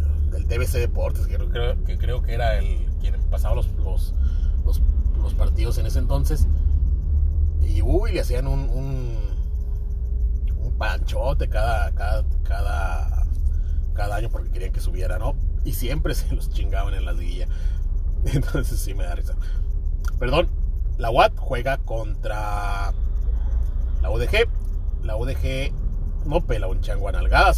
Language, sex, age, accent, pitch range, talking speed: Spanish, male, 30-49, Mexican, 70-90 Hz, 135 wpm